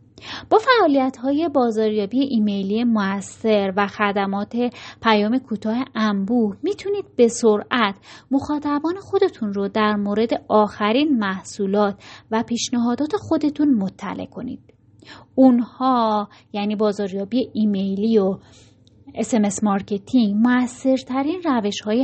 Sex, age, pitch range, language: female, 30-49, 200-250 Hz, Persian